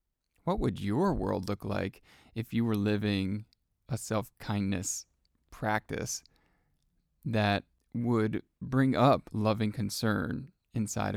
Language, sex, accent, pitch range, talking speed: English, male, American, 100-125 Hz, 105 wpm